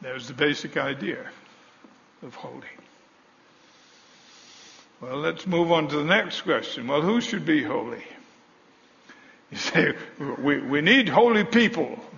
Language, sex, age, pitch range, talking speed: English, male, 60-79, 165-210 Hz, 130 wpm